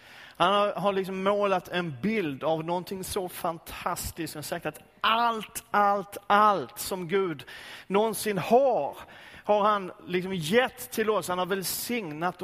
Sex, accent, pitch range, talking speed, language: male, native, 160-200 Hz, 140 wpm, Swedish